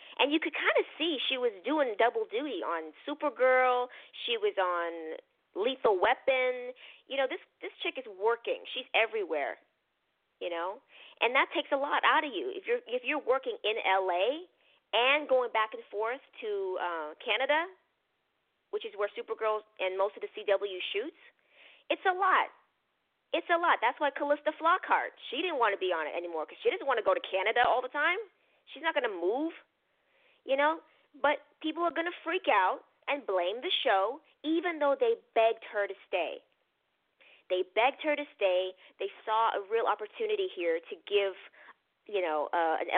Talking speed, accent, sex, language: 185 wpm, American, female, English